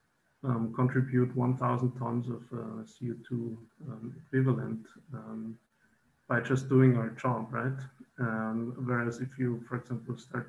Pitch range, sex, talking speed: 120-130 Hz, male, 130 wpm